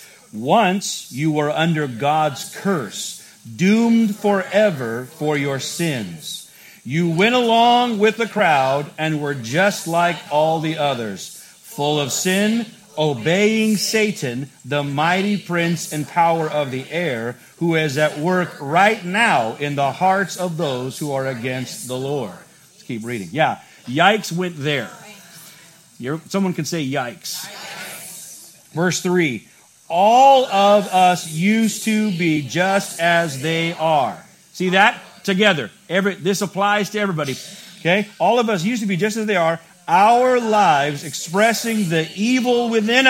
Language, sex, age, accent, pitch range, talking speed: English, male, 40-59, American, 160-225 Hz, 140 wpm